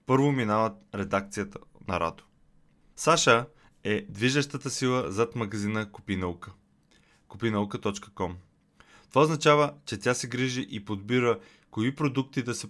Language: Bulgarian